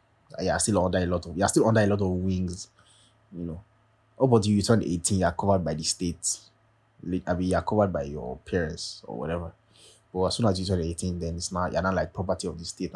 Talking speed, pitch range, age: 250 wpm, 95-115 Hz, 20-39